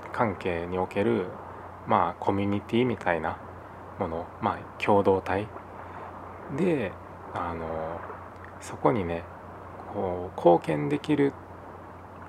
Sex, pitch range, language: male, 90-105 Hz, Japanese